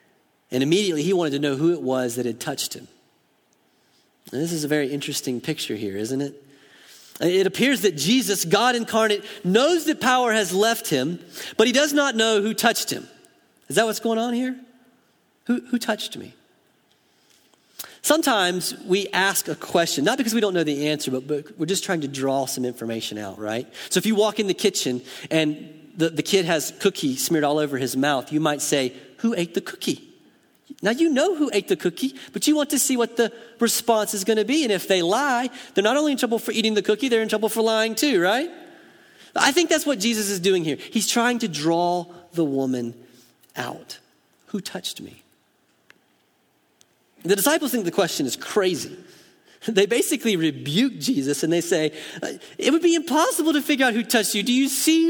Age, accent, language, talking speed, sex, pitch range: 40-59, American, Indonesian, 200 wpm, male, 155-250 Hz